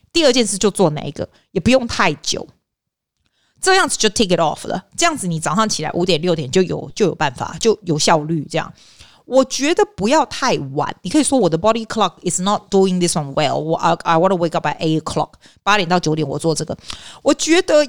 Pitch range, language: 160-215 Hz, Chinese